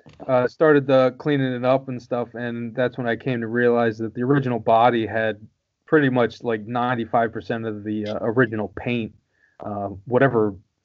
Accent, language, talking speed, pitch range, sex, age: American, English, 170 wpm, 110-130 Hz, male, 30-49